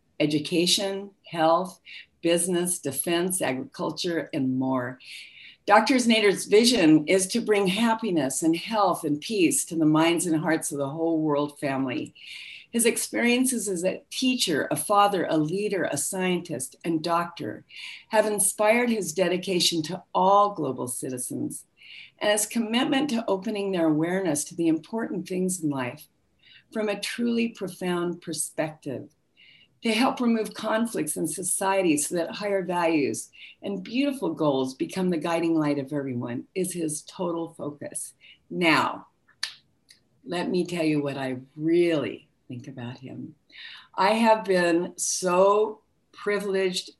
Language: English